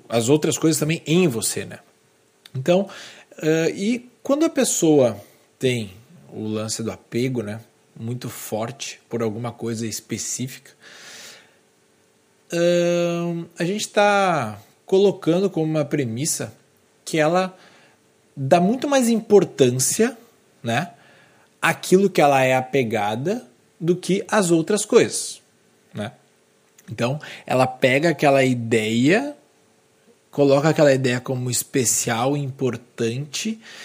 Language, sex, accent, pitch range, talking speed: Portuguese, male, Brazilian, 130-175 Hz, 105 wpm